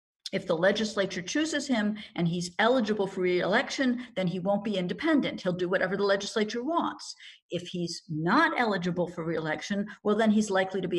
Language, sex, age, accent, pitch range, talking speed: English, female, 50-69, American, 170-225 Hz, 180 wpm